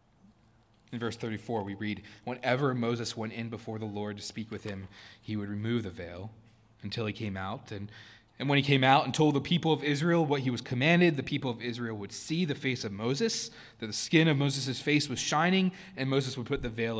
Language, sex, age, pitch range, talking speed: English, male, 20-39, 110-135 Hz, 230 wpm